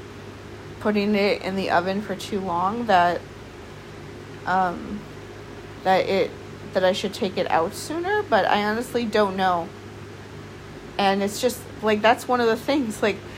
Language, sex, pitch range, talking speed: English, female, 140-205 Hz, 150 wpm